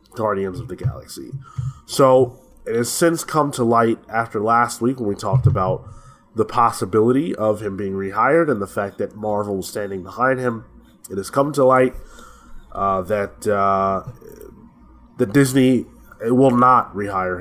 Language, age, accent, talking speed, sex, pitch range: English, 20-39, American, 160 wpm, male, 105-125 Hz